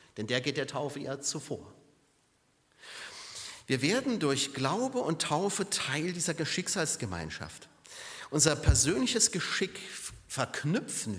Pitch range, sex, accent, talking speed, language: 135-200 Hz, male, German, 105 wpm, German